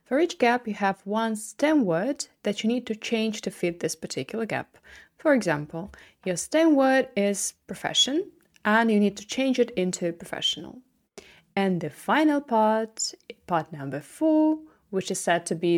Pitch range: 180-255 Hz